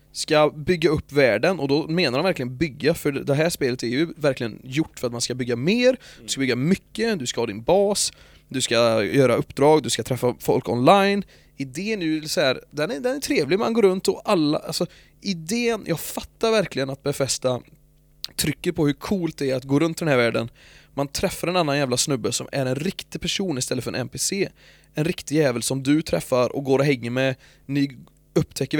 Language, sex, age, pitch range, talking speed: English, male, 20-39, 125-160 Hz, 215 wpm